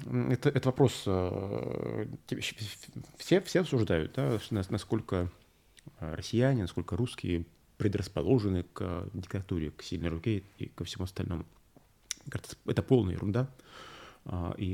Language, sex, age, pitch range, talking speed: Russian, male, 30-49, 95-125 Hz, 100 wpm